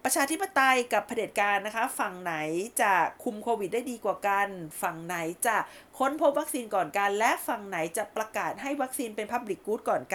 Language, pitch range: Thai, 210-260 Hz